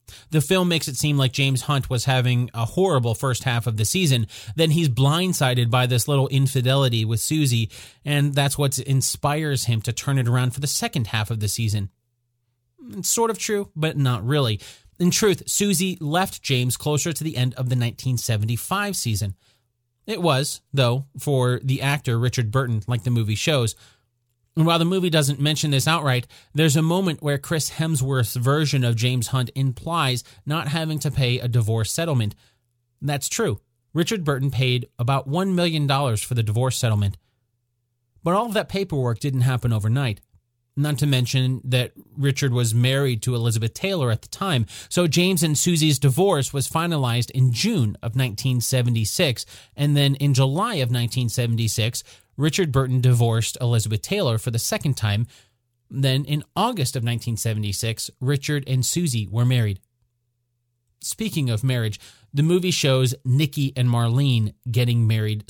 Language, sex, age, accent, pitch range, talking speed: English, male, 30-49, American, 120-145 Hz, 165 wpm